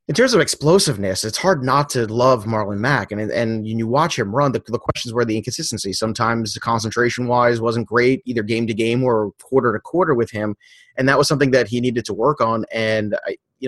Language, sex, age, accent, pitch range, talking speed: English, male, 30-49, American, 115-140 Hz, 205 wpm